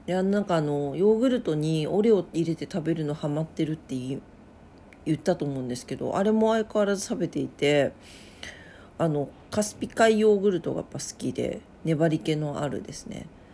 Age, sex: 40-59, female